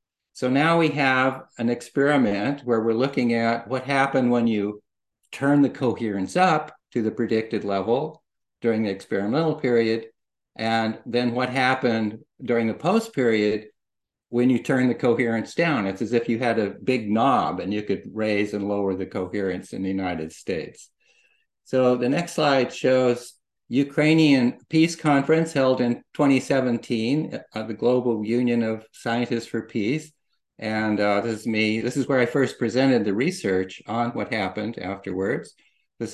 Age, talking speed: 60-79, 160 wpm